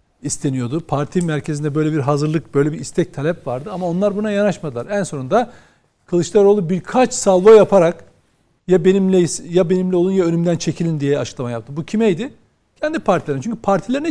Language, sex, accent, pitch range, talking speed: Turkish, male, native, 165-225 Hz, 160 wpm